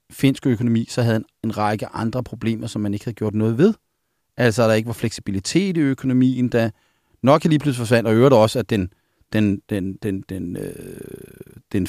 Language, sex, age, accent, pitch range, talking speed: Danish, male, 40-59, native, 115-150 Hz, 195 wpm